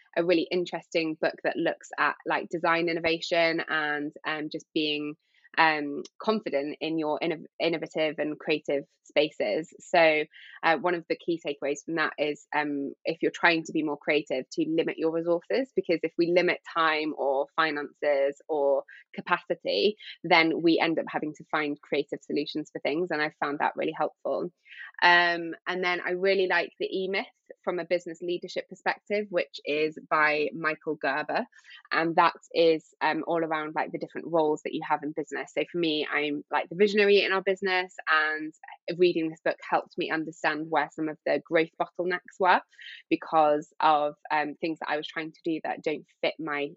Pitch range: 150-175 Hz